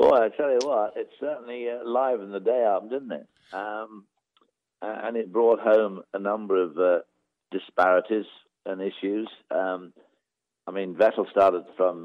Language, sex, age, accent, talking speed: English, male, 60-79, British, 160 wpm